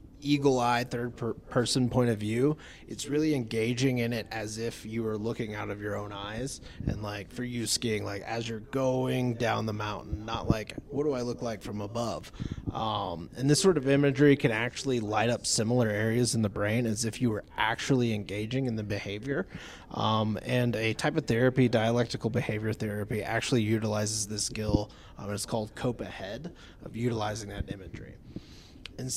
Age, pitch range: 30-49, 105-130 Hz